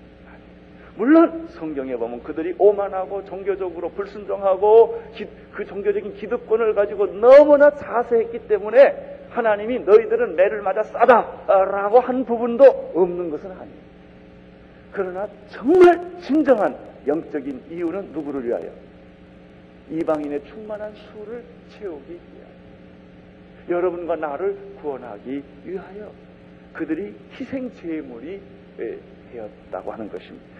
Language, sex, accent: Korean, male, native